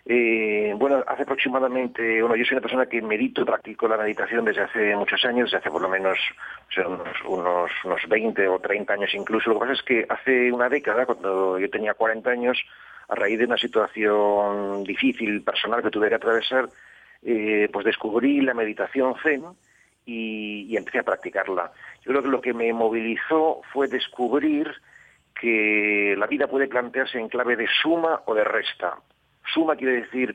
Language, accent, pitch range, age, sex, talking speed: Spanish, Spanish, 110-135 Hz, 40-59, male, 175 wpm